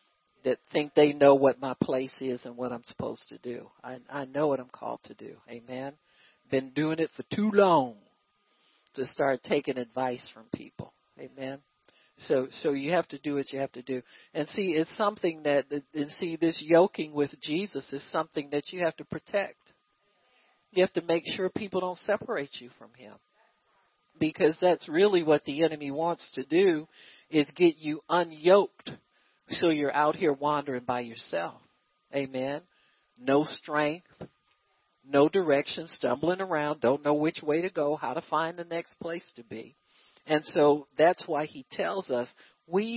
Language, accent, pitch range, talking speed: English, American, 140-180 Hz, 175 wpm